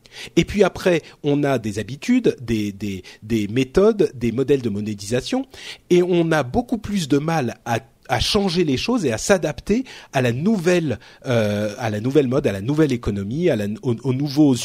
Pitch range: 120-170 Hz